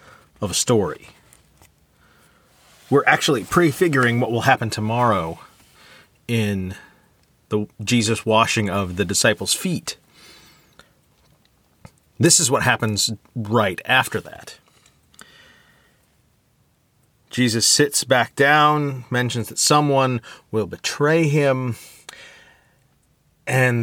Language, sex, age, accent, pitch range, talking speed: English, male, 30-49, American, 100-140 Hz, 90 wpm